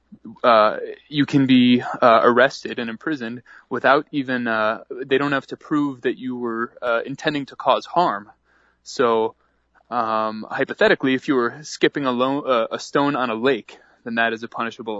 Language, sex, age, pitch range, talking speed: English, male, 20-39, 115-140 Hz, 175 wpm